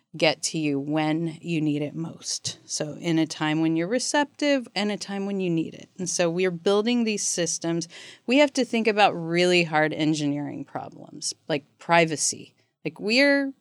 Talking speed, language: 185 wpm, English